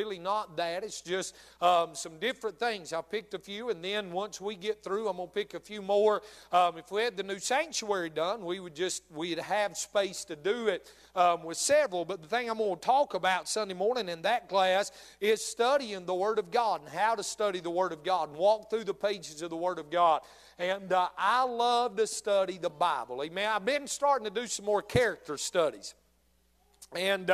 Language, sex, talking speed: English, male, 220 wpm